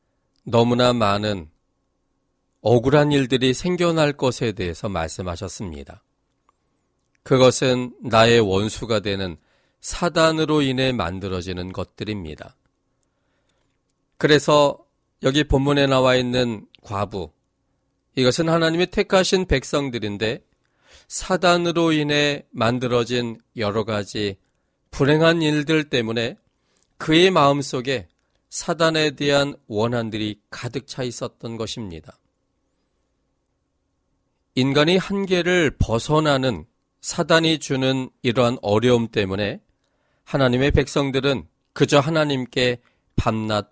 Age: 40-59